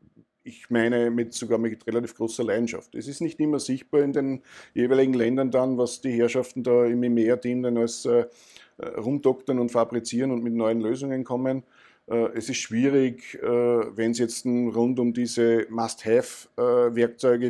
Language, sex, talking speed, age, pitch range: German, male, 160 wpm, 50-69, 115-135 Hz